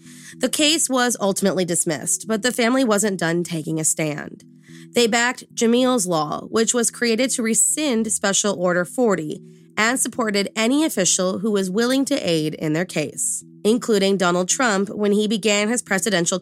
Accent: American